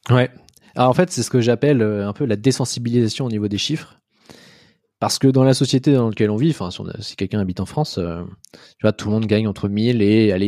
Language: French